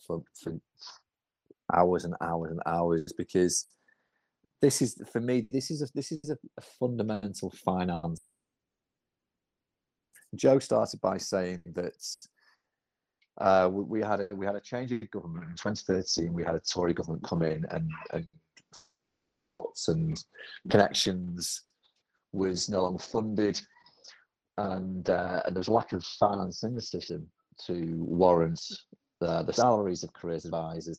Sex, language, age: male, English, 40-59